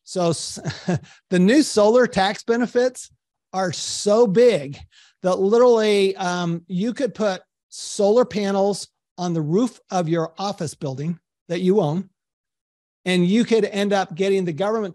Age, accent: 40-59, American